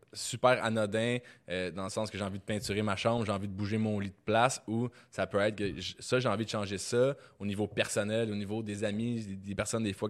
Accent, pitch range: Canadian, 100-125 Hz